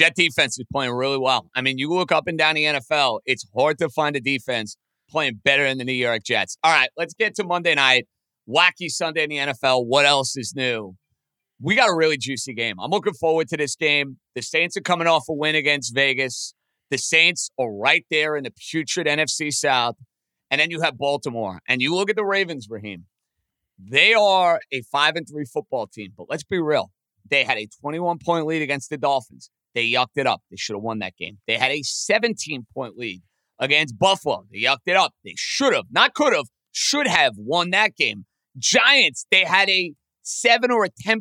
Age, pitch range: 30-49, 135-205 Hz